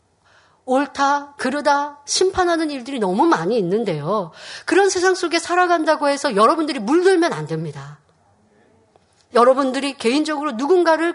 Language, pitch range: Korean, 220-310 Hz